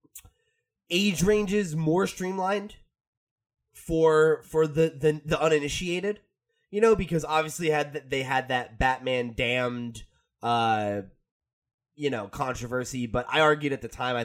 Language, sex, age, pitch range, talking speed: English, male, 20-39, 120-160 Hz, 130 wpm